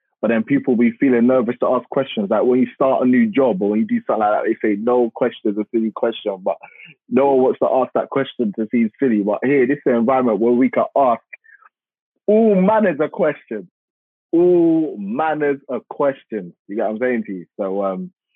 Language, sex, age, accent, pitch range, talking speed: English, male, 20-39, British, 100-125 Hz, 225 wpm